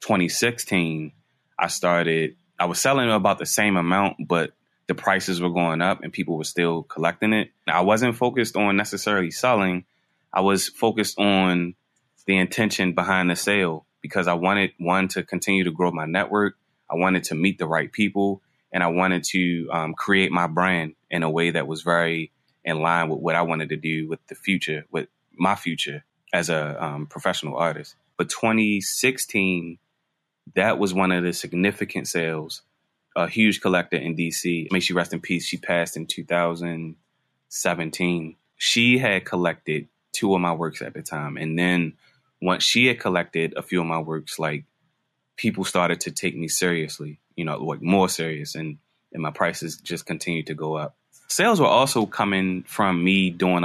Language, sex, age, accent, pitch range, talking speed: English, male, 20-39, American, 85-95 Hz, 180 wpm